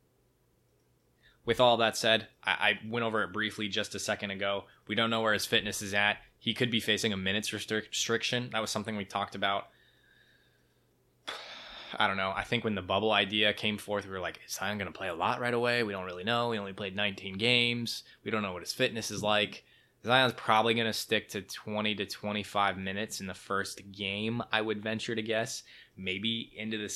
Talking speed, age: 215 wpm, 20-39